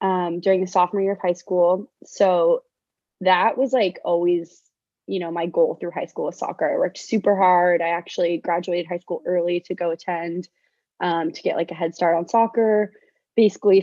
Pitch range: 170-210 Hz